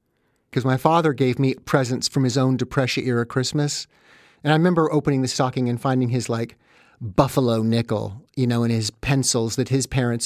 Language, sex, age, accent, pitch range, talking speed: English, male, 50-69, American, 120-145 Hz, 180 wpm